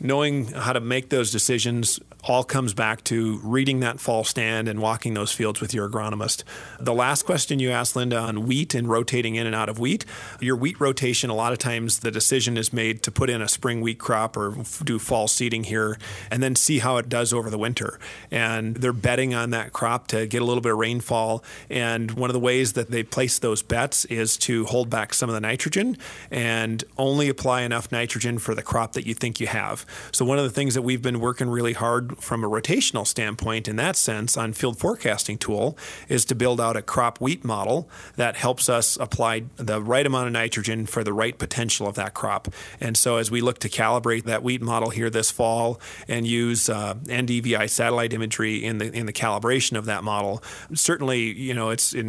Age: 40-59